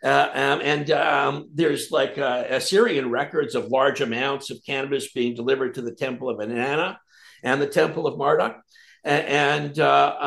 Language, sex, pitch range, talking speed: English, male, 125-165 Hz, 165 wpm